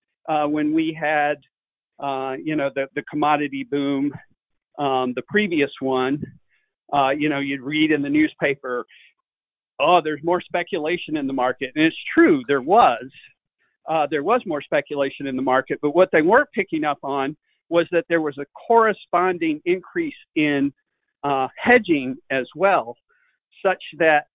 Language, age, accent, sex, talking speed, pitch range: English, 50-69, American, male, 160 wpm, 135-175 Hz